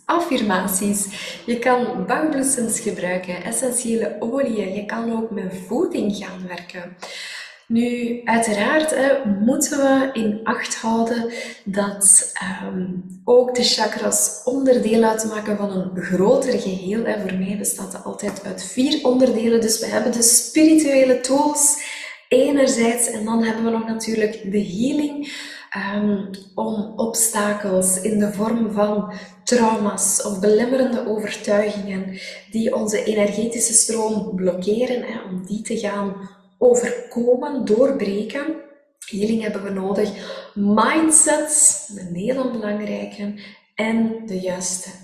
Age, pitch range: 20-39, 205-255 Hz